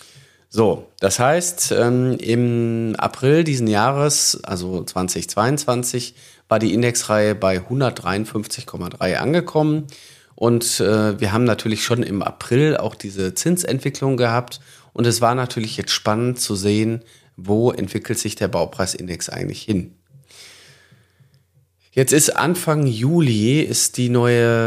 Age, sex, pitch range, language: 40-59, male, 105-135 Hz, German